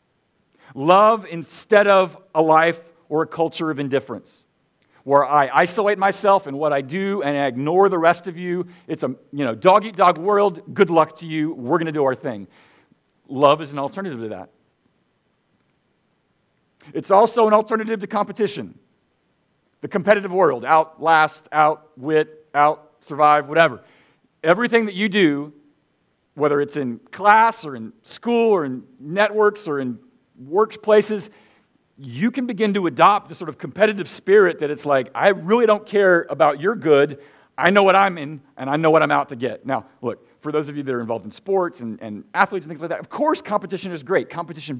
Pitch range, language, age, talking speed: 145-195 Hz, English, 50-69, 180 wpm